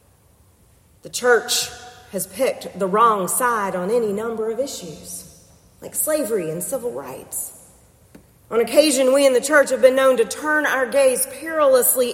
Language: English